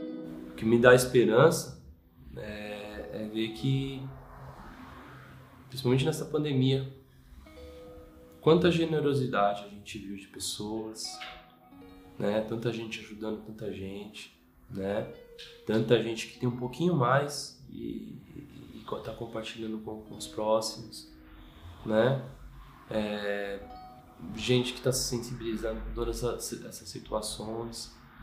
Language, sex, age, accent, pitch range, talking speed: Portuguese, male, 20-39, Brazilian, 100-120 Hz, 115 wpm